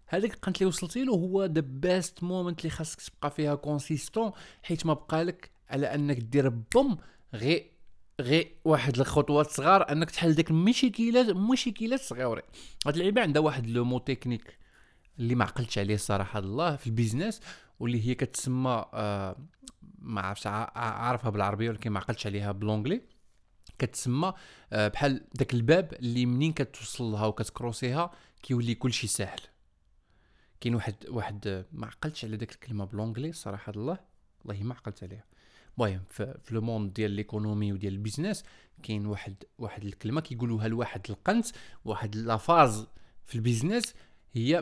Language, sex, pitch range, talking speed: Arabic, male, 110-160 Hz, 150 wpm